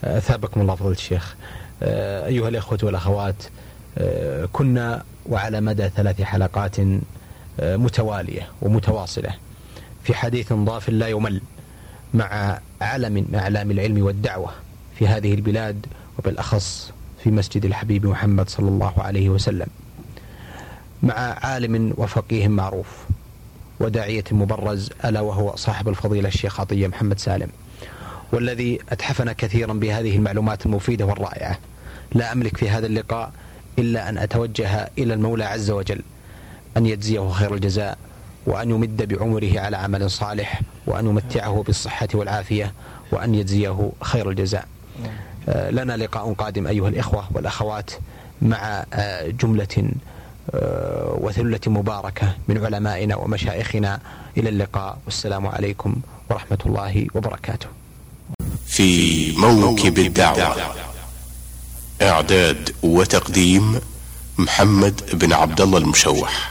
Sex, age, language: male, 30-49, Arabic